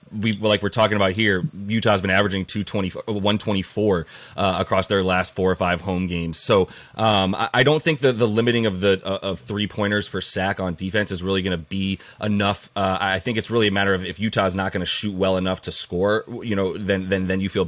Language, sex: English, male